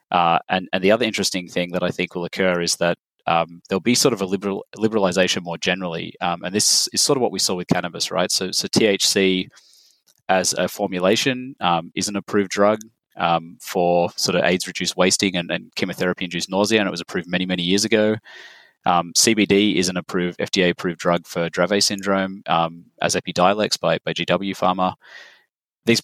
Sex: male